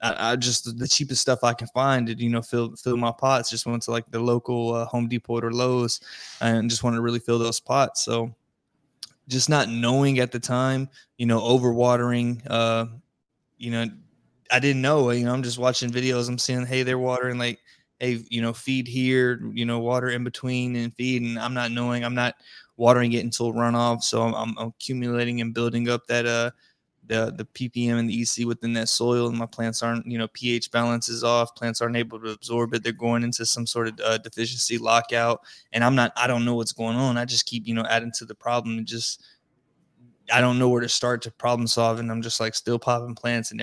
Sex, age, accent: male, 20-39, American